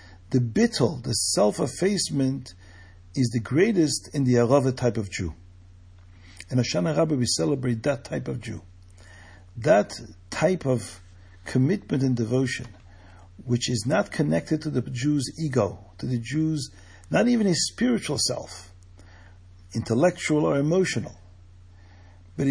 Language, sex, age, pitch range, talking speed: English, male, 50-69, 90-155 Hz, 130 wpm